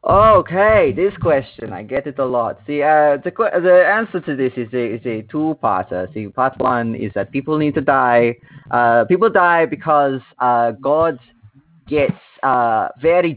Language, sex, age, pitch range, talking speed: English, male, 20-39, 120-160 Hz, 180 wpm